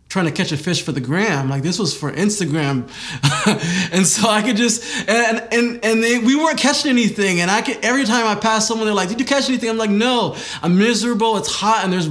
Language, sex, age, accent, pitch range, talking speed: English, male, 20-39, American, 125-185 Hz, 245 wpm